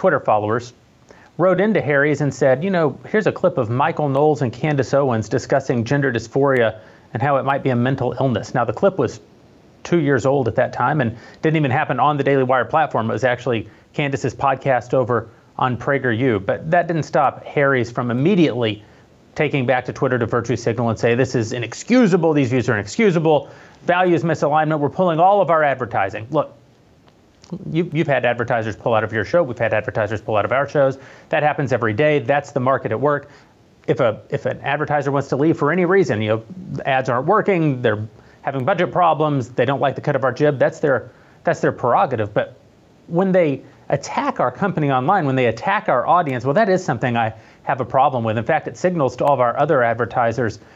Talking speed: 210 wpm